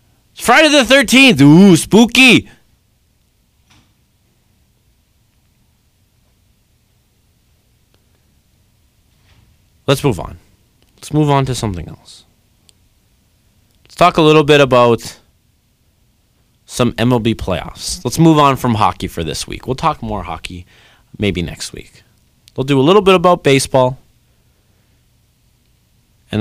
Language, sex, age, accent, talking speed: English, male, 40-59, American, 105 wpm